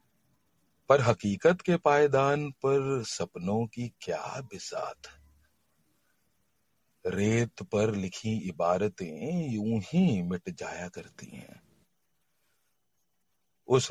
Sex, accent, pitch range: male, native, 90-140 Hz